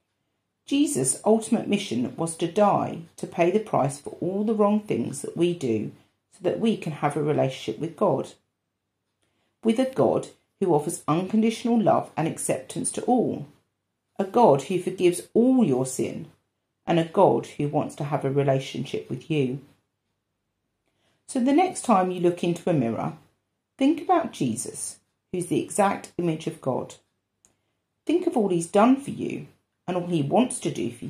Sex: female